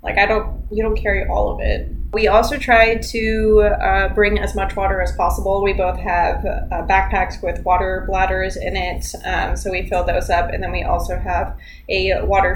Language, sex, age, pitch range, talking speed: English, female, 20-39, 175-210 Hz, 205 wpm